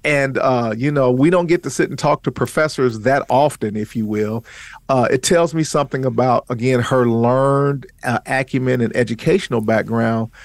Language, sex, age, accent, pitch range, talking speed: English, male, 50-69, American, 120-140 Hz, 185 wpm